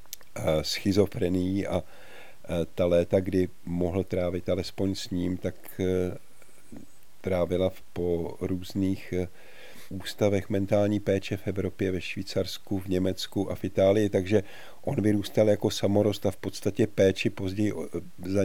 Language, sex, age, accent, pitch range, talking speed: Czech, male, 50-69, native, 90-105 Hz, 125 wpm